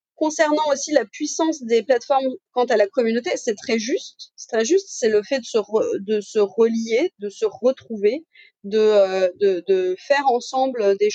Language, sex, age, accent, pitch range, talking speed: French, female, 30-49, French, 220-300 Hz, 185 wpm